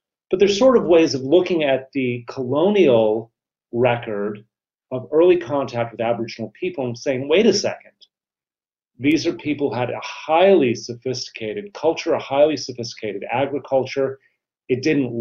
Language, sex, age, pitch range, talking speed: English, male, 40-59, 115-140 Hz, 145 wpm